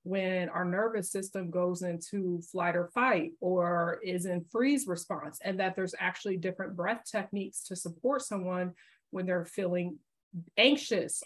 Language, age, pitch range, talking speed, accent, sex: English, 20-39, 180-220 Hz, 150 wpm, American, female